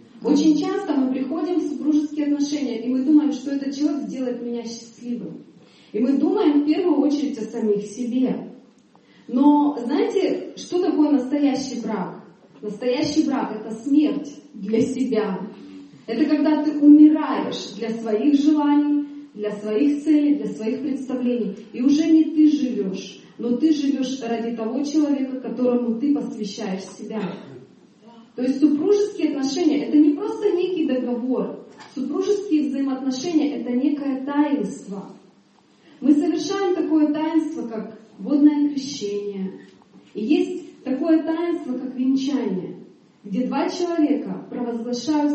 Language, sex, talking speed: Russian, female, 130 wpm